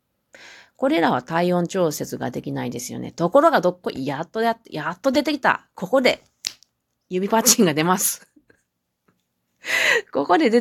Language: Japanese